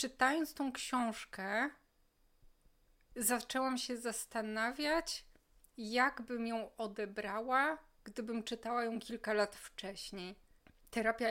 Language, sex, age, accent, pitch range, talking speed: Polish, female, 20-39, native, 210-245 Hz, 90 wpm